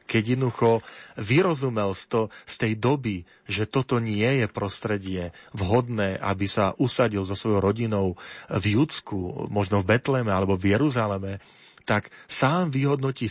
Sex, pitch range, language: male, 95-115 Hz, Slovak